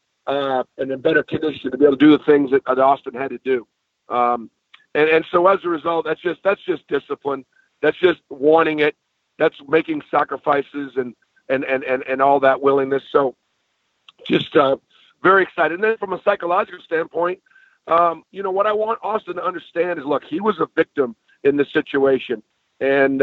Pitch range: 140-175 Hz